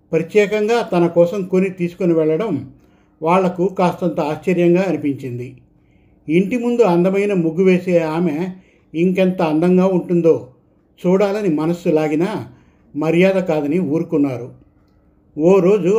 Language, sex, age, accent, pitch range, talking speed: Telugu, male, 50-69, native, 155-185 Hz, 100 wpm